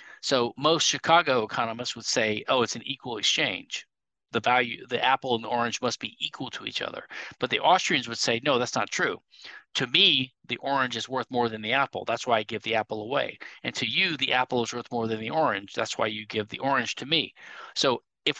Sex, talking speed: male, 230 wpm